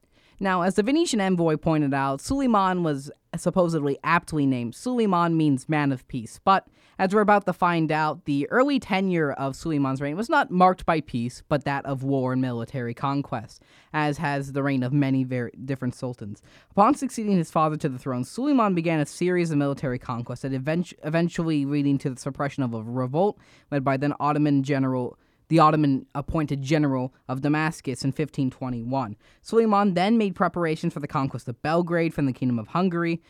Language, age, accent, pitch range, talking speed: English, 20-39, American, 135-175 Hz, 180 wpm